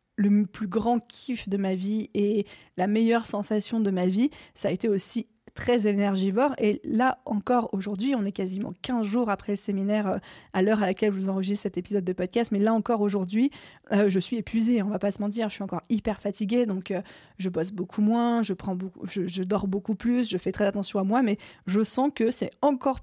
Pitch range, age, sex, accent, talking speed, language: 200-240 Hz, 20-39, female, French, 225 wpm, French